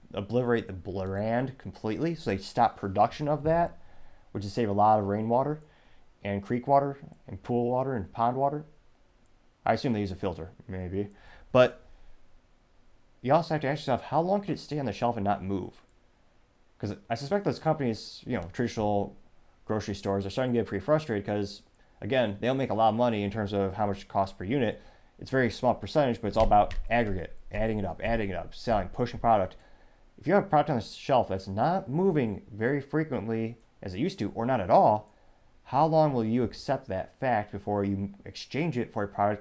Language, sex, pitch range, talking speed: English, male, 100-130 Hz, 210 wpm